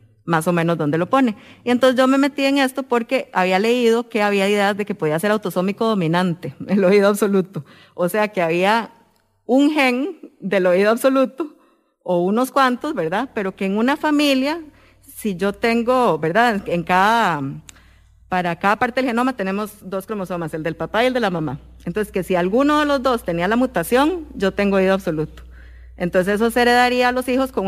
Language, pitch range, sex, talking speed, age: English, 175-245 Hz, female, 195 wpm, 30-49